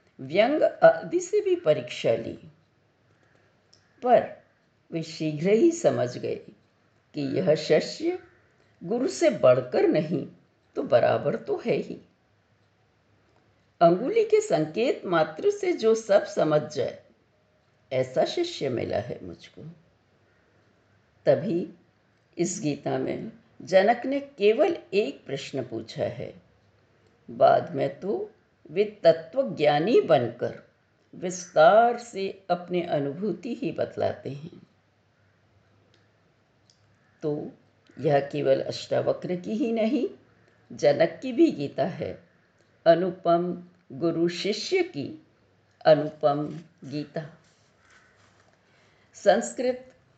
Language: Hindi